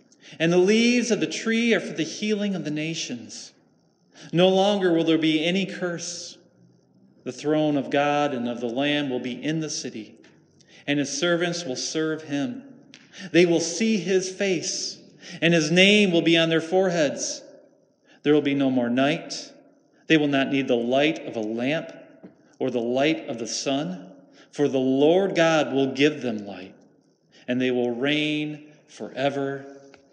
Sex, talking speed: male, 170 wpm